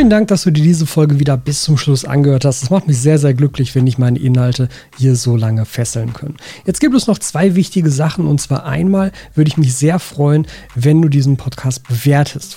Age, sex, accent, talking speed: 40-59, male, German, 230 wpm